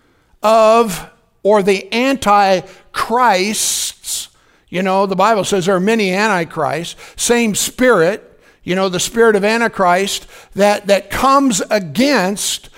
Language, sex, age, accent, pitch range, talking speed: English, male, 60-79, American, 205-270 Hz, 115 wpm